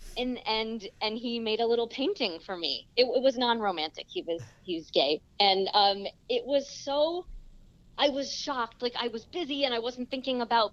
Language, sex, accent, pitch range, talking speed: English, female, American, 175-235 Hz, 200 wpm